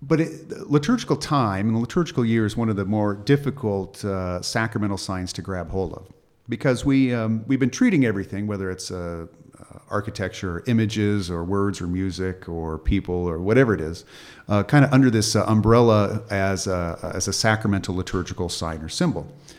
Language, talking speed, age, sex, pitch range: English, 185 wpm, 40-59, male, 95-135 Hz